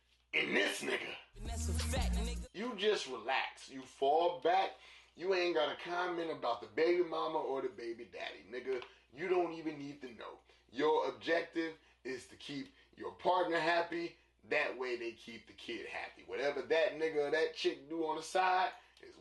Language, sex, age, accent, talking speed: English, male, 30-49, American, 170 wpm